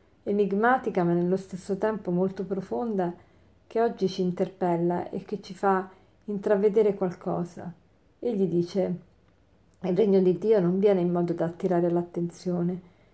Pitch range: 180-200 Hz